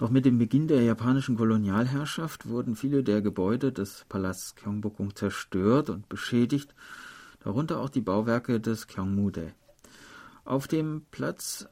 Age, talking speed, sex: 40-59, 135 wpm, male